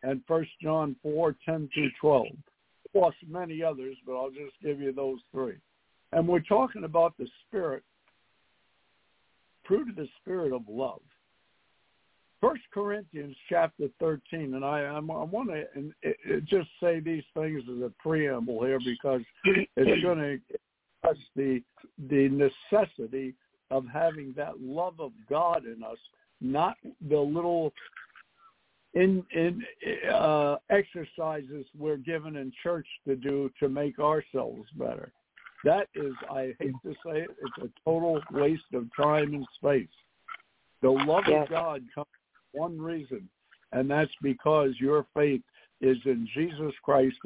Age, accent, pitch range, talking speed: 60-79, American, 135-165 Hz, 140 wpm